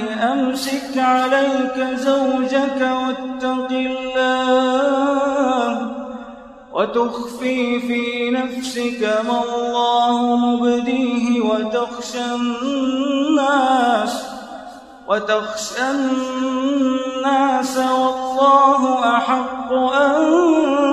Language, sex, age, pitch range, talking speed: Arabic, male, 30-49, 215-260 Hz, 50 wpm